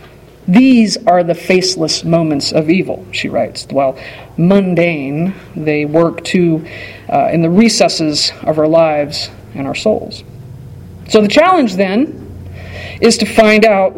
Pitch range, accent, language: 160-215 Hz, American, English